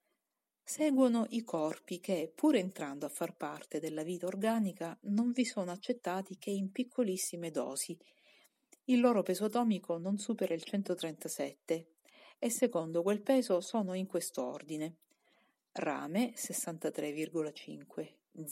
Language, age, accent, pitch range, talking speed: Italian, 50-69, native, 165-225 Hz, 125 wpm